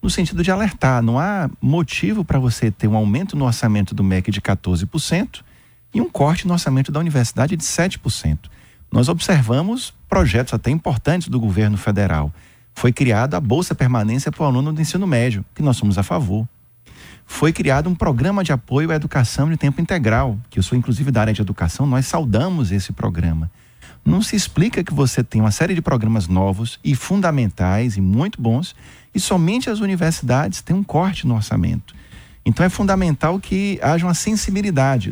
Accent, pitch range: Brazilian, 110-160 Hz